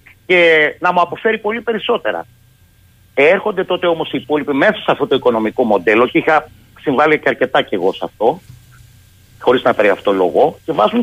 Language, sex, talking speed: Greek, male, 175 wpm